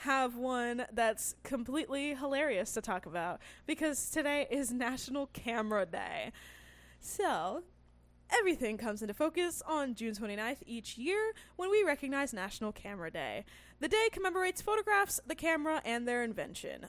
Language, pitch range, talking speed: English, 220-325 Hz, 140 wpm